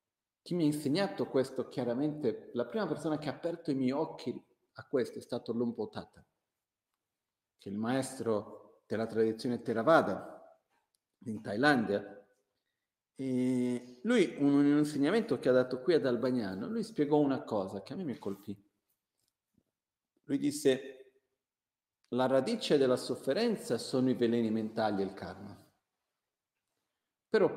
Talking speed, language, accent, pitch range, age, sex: 135 wpm, Italian, native, 115-165 Hz, 50-69, male